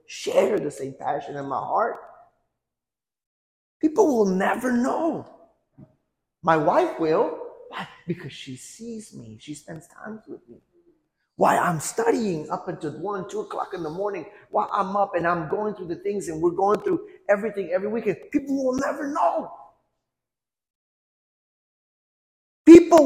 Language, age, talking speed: English, 30-49, 145 wpm